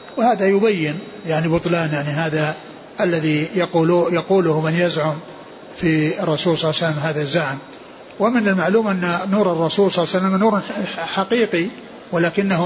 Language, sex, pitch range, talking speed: Arabic, male, 165-200 Hz, 145 wpm